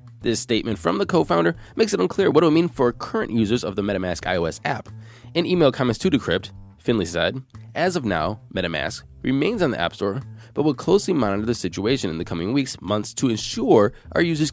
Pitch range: 105-135 Hz